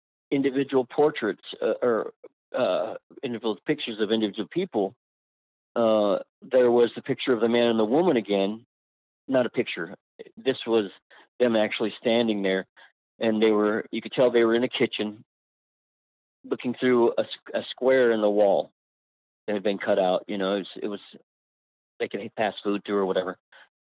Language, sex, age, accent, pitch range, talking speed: English, male, 40-59, American, 95-120 Hz, 170 wpm